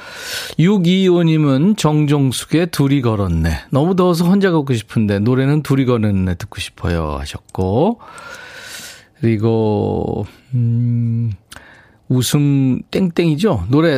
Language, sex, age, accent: Korean, male, 40-59, native